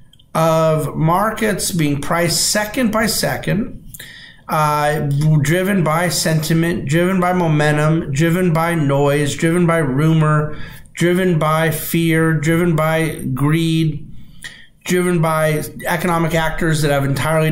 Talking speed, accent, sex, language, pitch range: 115 wpm, American, male, English, 145-170 Hz